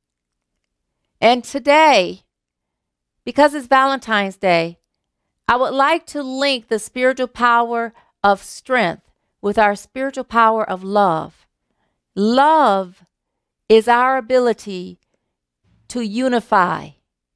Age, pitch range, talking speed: 40-59, 175-250 Hz, 95 wpm